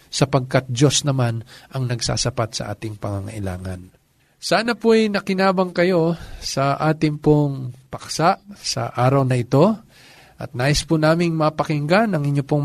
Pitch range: 125-175 Hz